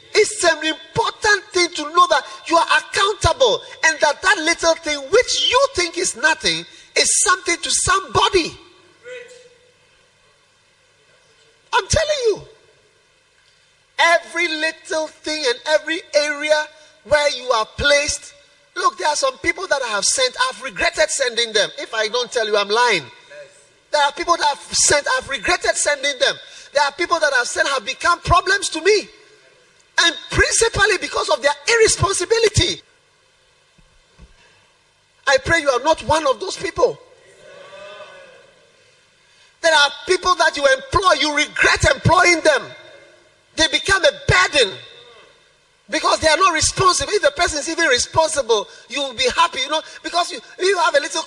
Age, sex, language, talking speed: 30-49, male, English, 155 wpm